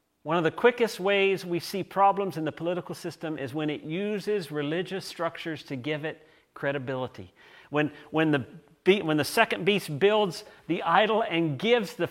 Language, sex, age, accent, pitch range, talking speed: English, male, 40-59, American, 150-190 Hz, 175 wpm